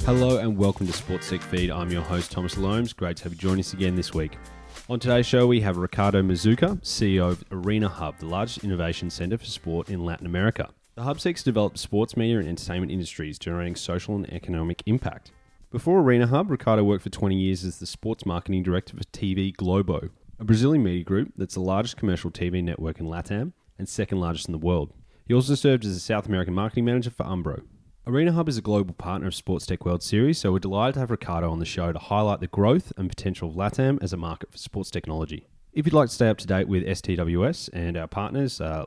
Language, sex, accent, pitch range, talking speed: English, male, Australian, 85-110 Hz, 230 wpm